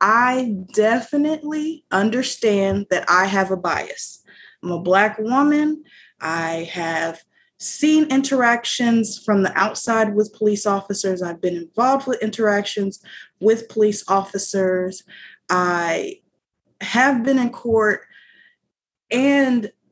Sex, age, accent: female, 20-39, American